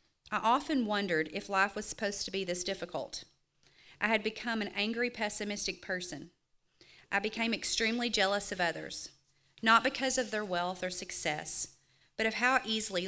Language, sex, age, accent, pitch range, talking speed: English, female, 40-59, American, 175-215 Hz, 160 wpm